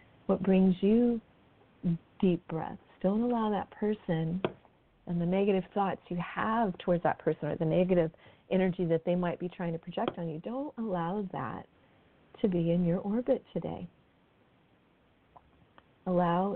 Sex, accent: female, American